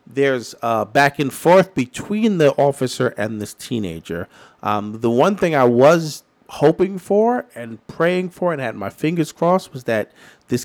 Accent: American